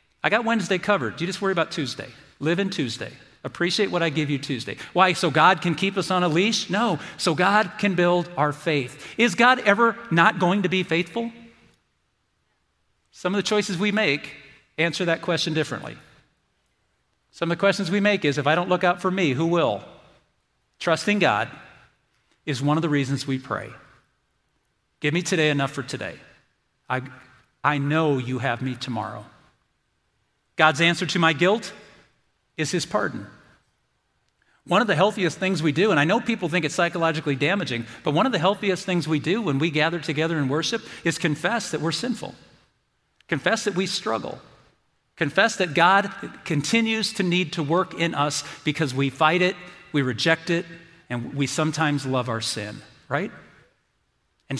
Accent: American